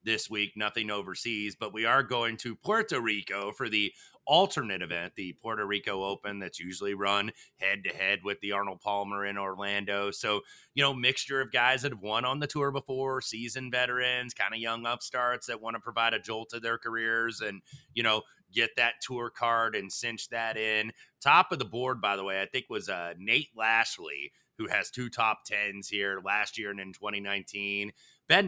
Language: English